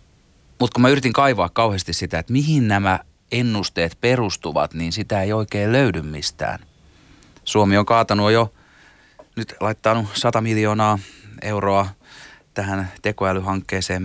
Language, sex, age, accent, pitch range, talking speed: Finnish, male, 30-49, native, 90-115 Hz, 125 wpm